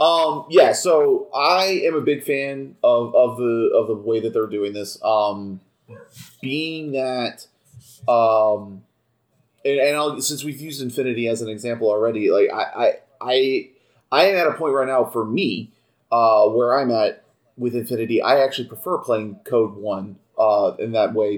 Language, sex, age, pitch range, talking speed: English, male, 30-49, 115-150 Hz, 175 wpm